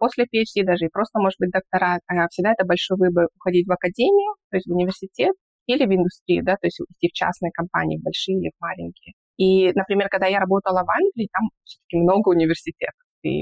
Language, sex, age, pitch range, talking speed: Russian, female, 20-39, 175-215 Hz, 195 wpm